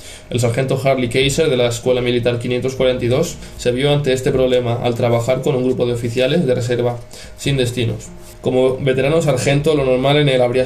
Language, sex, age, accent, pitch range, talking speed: Spanish, male, 20-39, Spanish, 115-130 Hz, 185 wpm